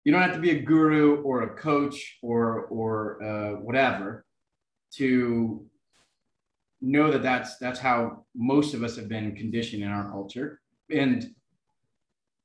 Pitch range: 115-155 Hz